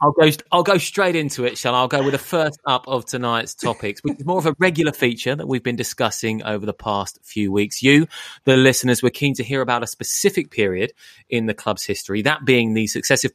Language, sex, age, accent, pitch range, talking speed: English, male, 20-39, British, 110-135 Hz, 240 wpm